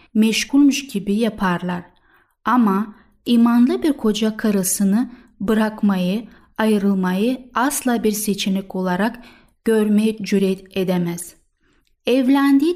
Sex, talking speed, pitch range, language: female, 85 wpm, 200-255 Hz, Turkish